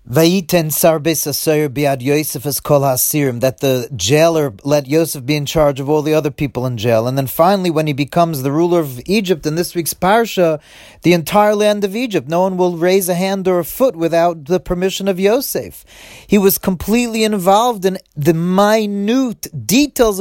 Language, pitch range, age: English, 160-220 Hz, 40-59